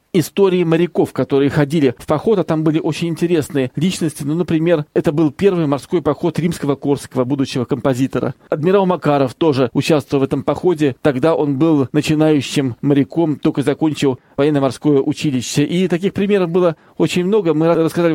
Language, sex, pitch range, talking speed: Russian, male, 145-170 Hz, 155 wpm